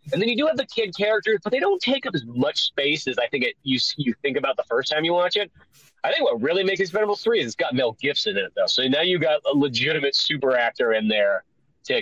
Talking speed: 280 wpm